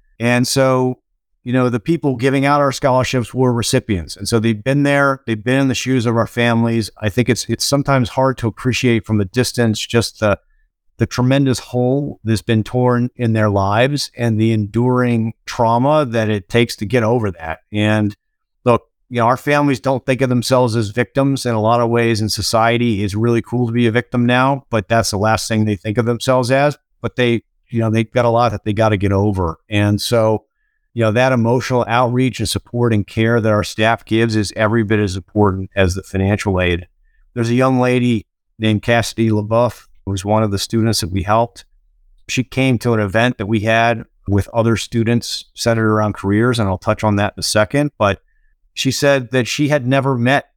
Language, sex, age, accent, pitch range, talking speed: English, male, 50-69, American, 105-125 Hz, 210 wpm